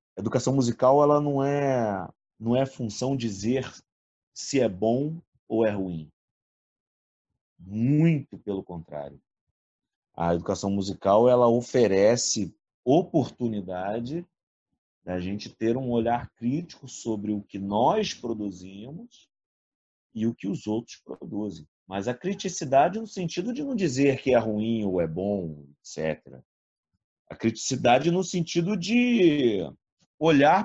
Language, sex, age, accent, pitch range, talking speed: Portuguese, male, 40-59, Brazilian, 100-140 Hz, 125 wpm